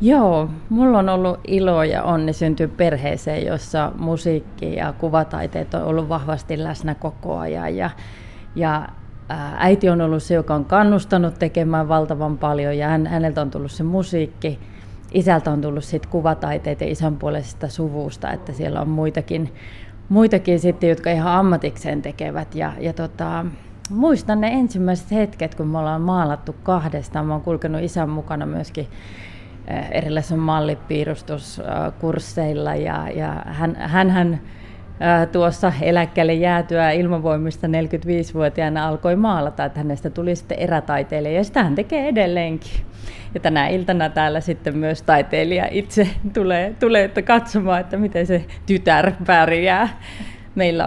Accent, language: native, Finnish